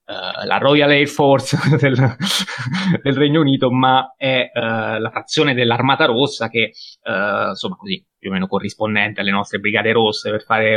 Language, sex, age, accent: Italian, male, 20-39, native